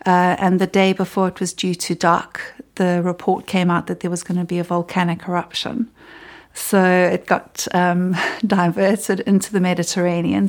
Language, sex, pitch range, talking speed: English, female, 175-205 Hz, 175 wpm